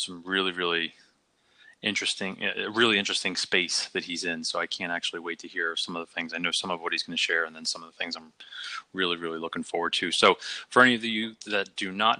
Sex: male